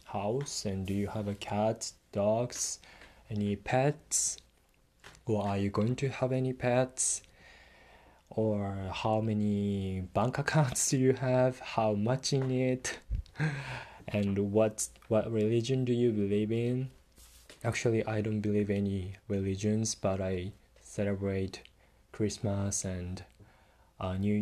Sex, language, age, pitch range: male, Japanese, 20-39, 95-115 Hz